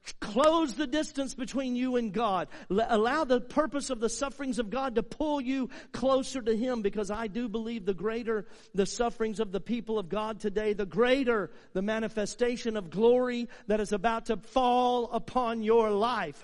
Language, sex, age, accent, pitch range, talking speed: English, male, 50-69, American, 210-255 Hz, 180 wpm